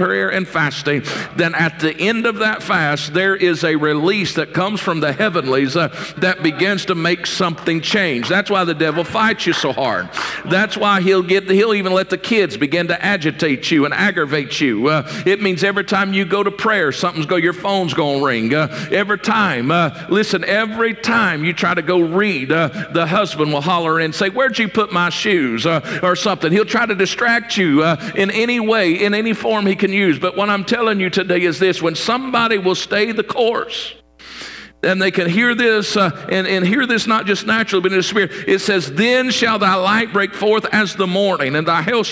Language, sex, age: English, male, 50-69